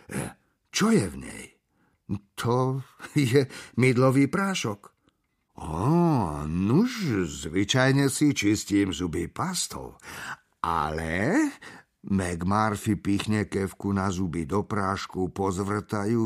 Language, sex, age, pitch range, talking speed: Slovak, male, 50-69, 90-110 Hz, 95 wpm